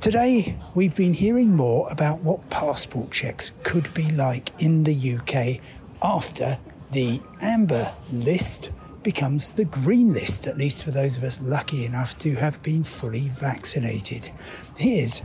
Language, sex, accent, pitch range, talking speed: English, male, British, 130-175 Hz, 145 wpm